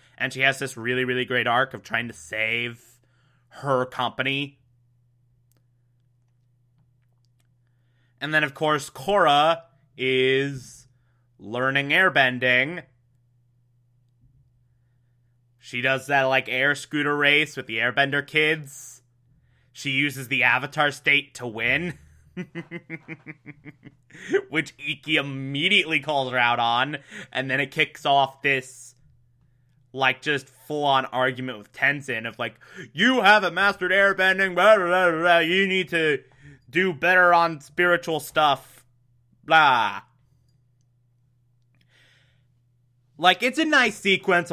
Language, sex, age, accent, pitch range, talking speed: English, male, 20-39, American, 125-155 Hz, 110 wpm